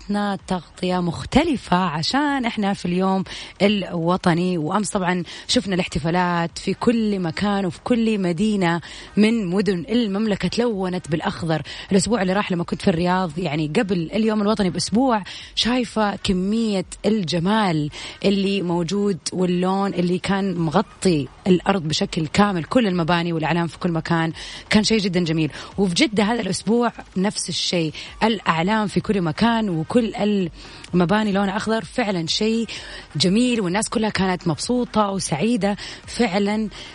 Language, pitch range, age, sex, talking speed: Arabic, 175-220 Hz, 30-49, female, 130 wpm